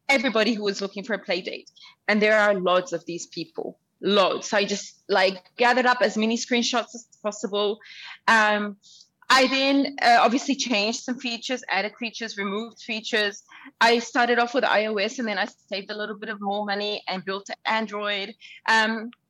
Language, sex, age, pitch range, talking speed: English, female, 30-49, 205-245 Hz, 180 wpm